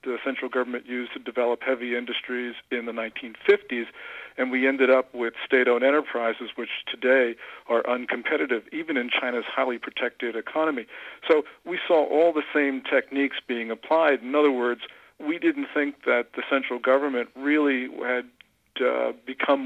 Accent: American